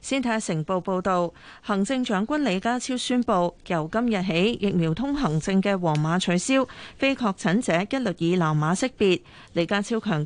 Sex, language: female, Chinese